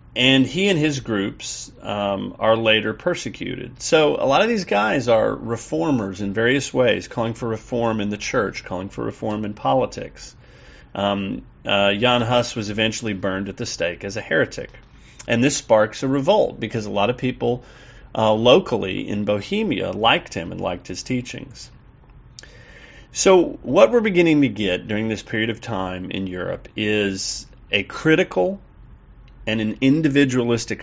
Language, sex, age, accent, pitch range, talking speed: English, male, 40-59, American, 100-130 Hz, 160 wpm